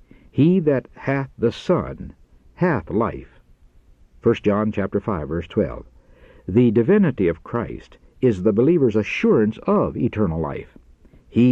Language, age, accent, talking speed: English, 60-79, American, 130 wpm